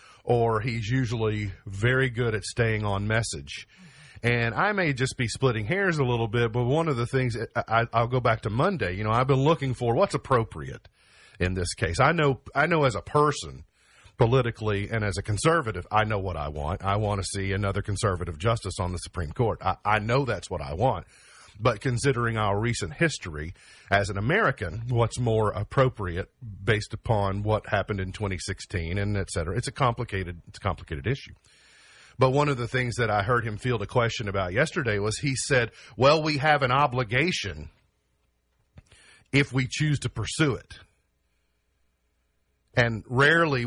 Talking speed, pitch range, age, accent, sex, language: 180 wpm, 100-130 Hz, 40-59, American, male, English